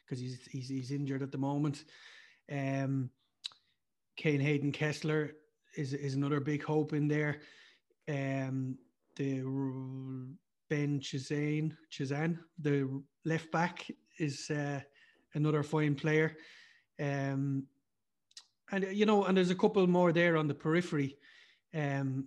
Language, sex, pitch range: English, male, 140-155 Hz